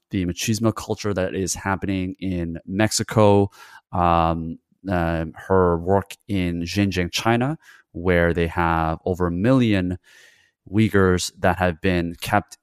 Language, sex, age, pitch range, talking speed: English, male, 30-49, 85-100 Hz, 125 wpm